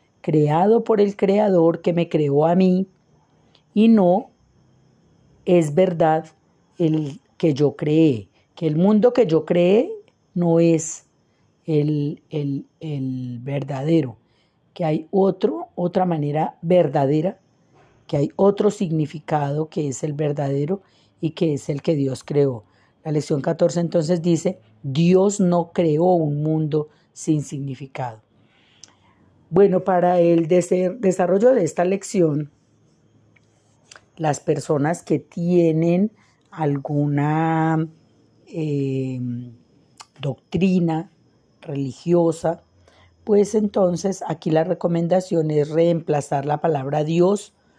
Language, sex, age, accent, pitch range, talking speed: Spanish, female, 40-59, Colombian, 145-175 Hz, 110 wpm